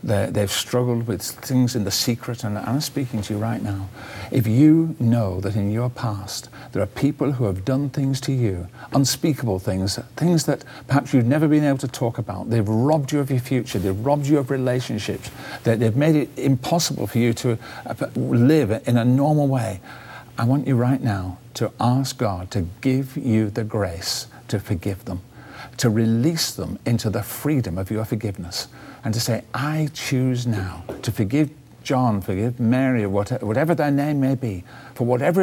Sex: male